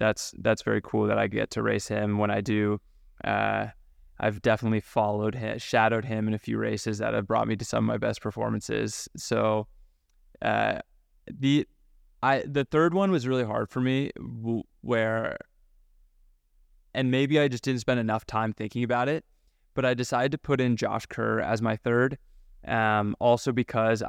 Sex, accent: male, American